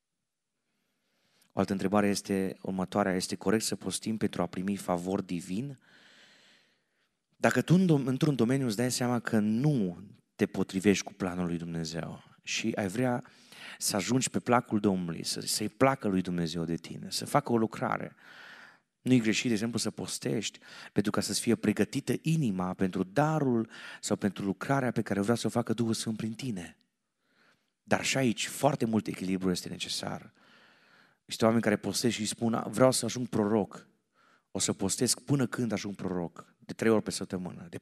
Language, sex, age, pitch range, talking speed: Romanian, male, 30-49, 100-135 Hz, 170 wpm